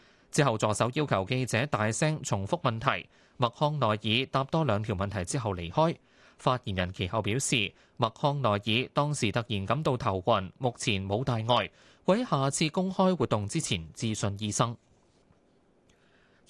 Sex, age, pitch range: male, 20-39, 110-150 Hz